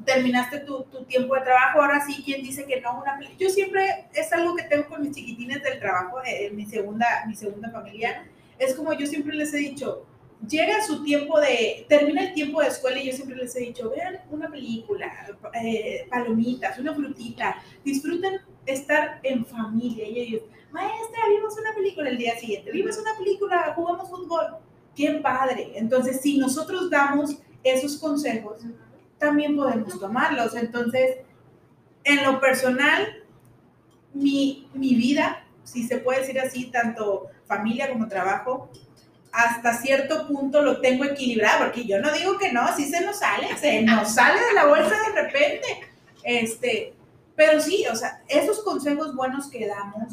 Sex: female